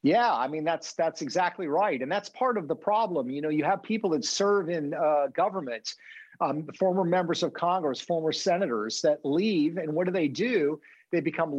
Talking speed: 200 wpm